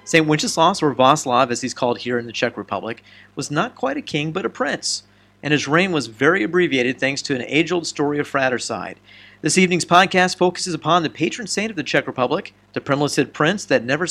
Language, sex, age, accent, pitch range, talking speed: English, male, 40-59, American, 120-180 Hz, 215 wpm